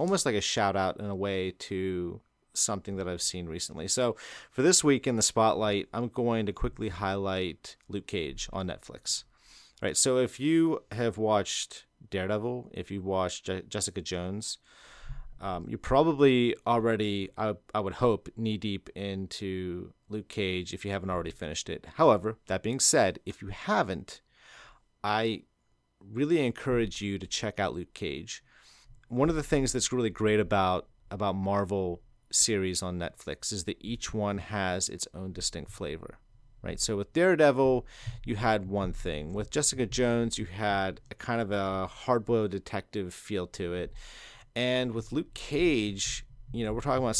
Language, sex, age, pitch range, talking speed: English, male, 30-49, 95-120 Hz, 165 wpm